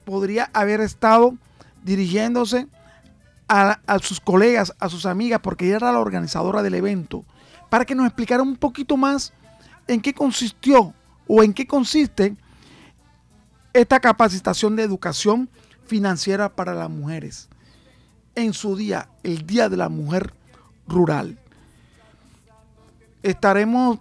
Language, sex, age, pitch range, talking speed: Spanish, male, 40-59, 185-240 Hz, 125 wpm